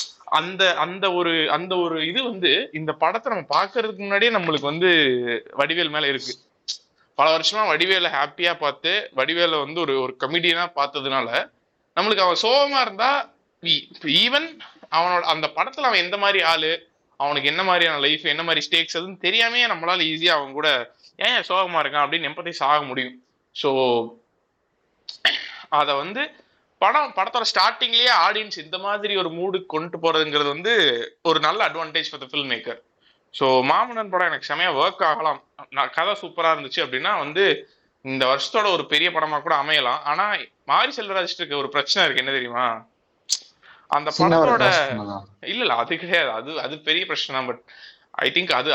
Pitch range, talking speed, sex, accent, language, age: 145-190 Hz, 150 wpm, male, native, Tamil, 20-39